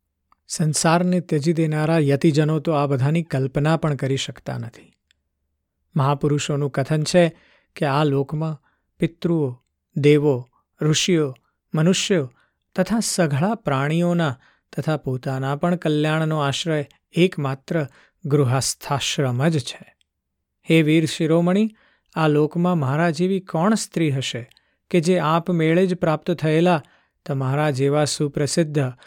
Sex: male